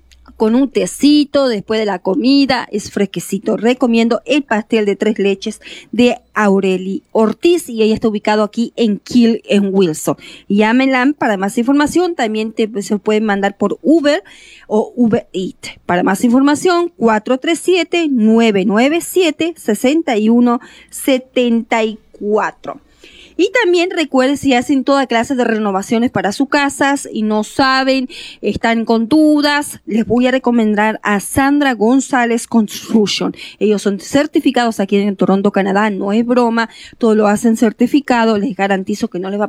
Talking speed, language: 140 wpm, English